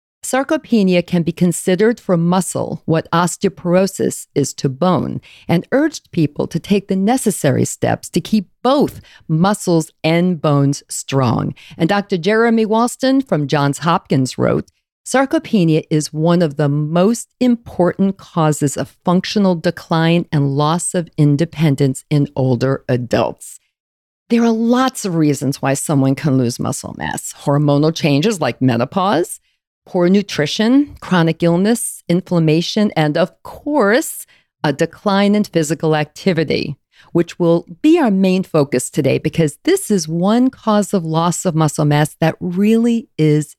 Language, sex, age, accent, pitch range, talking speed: English, female, 50-69, American, 150-200 Hz, 140 wpm